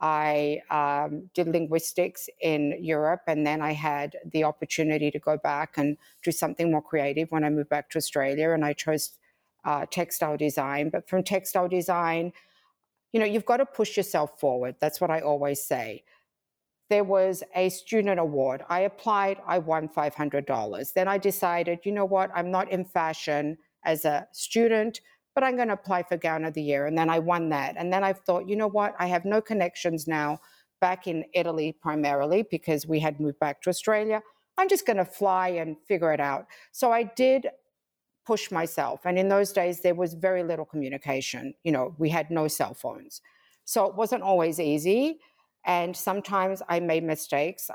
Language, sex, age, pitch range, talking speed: English, female, 50-69, 150-190 Hz, 190 wpm